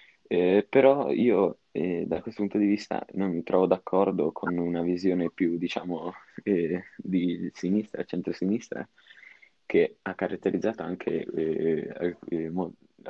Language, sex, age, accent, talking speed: Italian, male, 20-39, native, 125 wpm